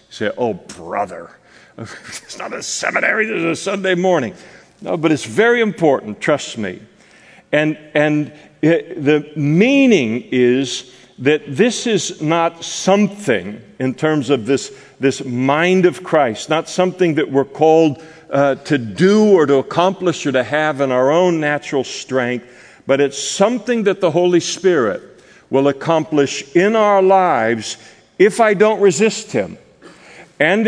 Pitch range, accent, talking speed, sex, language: 135-185 Hz, American, 145 wpm, male, English